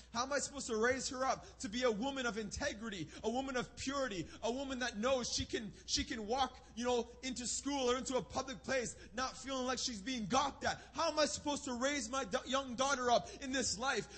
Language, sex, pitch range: English, male, 220-280 Hz